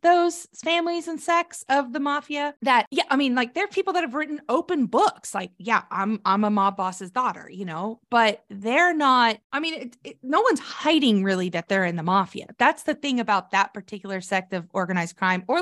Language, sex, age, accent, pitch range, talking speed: English, female, 20-39, American, 195-265 Hz, 210 wpm